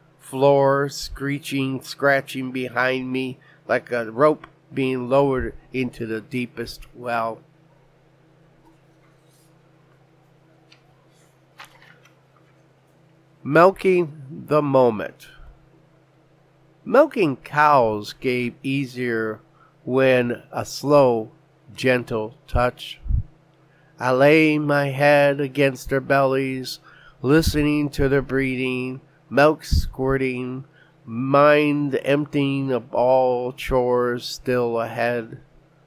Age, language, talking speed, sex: 50-69, English, 75 wpm, male